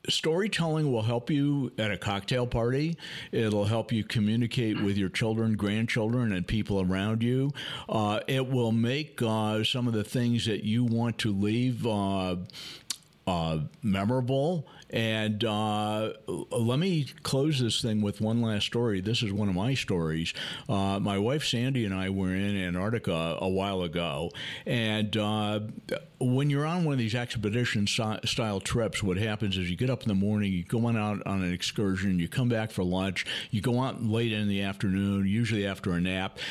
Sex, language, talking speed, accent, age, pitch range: male, English, 180 wpm, American, 50-69, 100-125 Hz